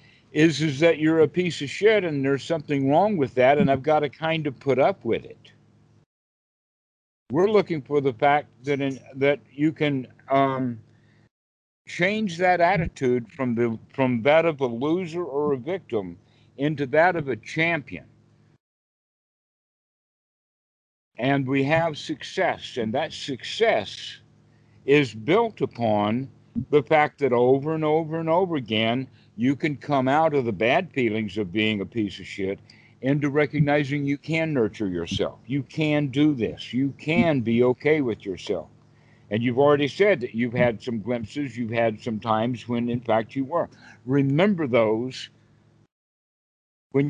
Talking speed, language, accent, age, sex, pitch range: 155 wpm, English, American, 60-79, male, 115-150 Hz